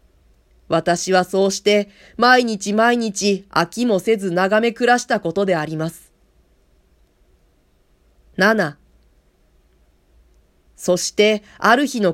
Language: Japanese